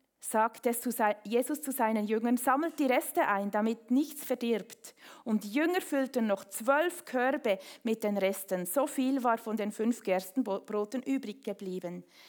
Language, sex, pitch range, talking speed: German, female, 215-275 Hz, 160 wpm